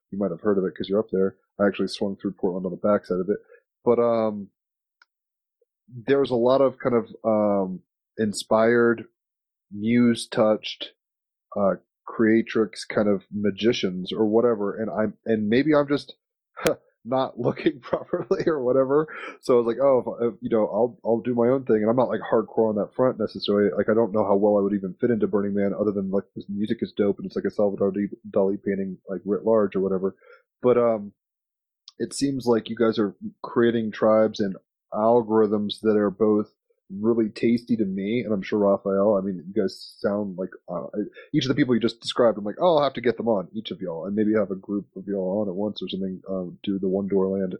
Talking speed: 215 wpm